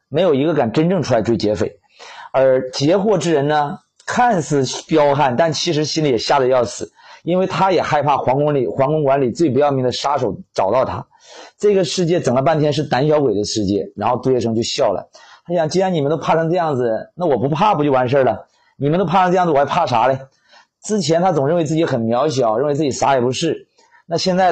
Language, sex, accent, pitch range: Chinese, male, native, 125-170 Hz